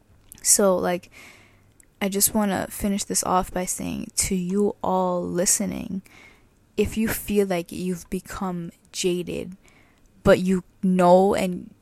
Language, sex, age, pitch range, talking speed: English, female, 10-29, 175-200 Hz, 130 wpm